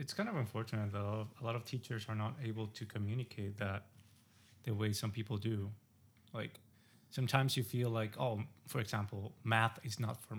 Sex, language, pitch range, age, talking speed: male, English, 110-130 Hz, 20-39, 185 wpm